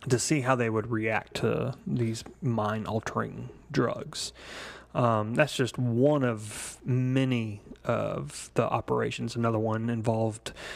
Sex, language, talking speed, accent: male, English, 125 wpm, American